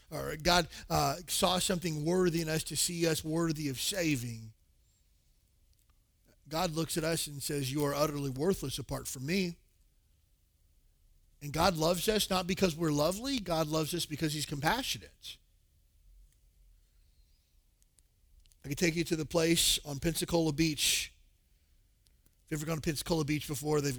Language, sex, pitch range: English, male, 100-160 Hz